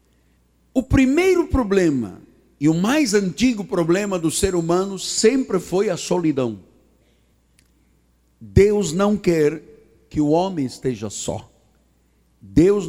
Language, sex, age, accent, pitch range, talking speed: Portuguese, male, 60-79, Brazilian, 145-235 Hz, 110 wpm